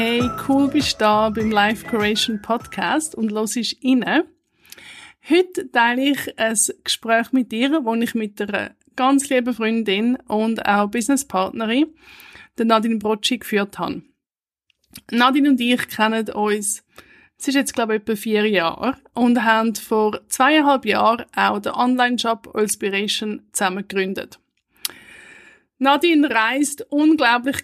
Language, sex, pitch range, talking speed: English, female, 220-265 Hz, 135 wpm